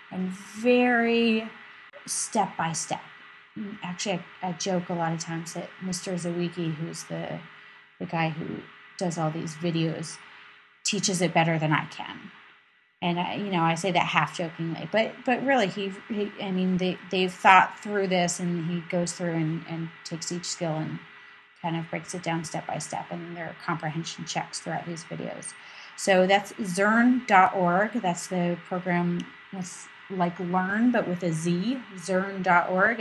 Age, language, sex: 30-49, English, female